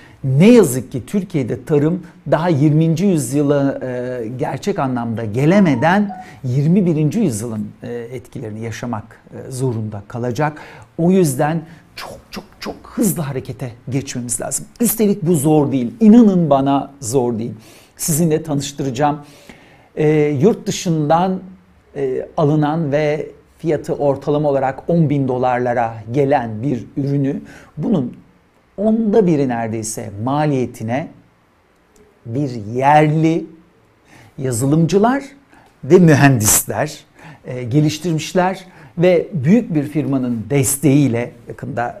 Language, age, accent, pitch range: Turkish, 60-79, native, 125-170 Hz